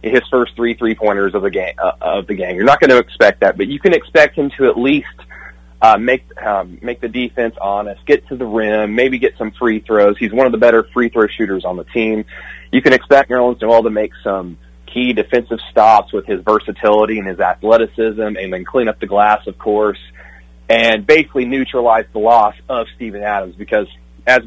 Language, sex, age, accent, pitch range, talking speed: English, male, 30-49, American, 95-125 Hz, 215 wpm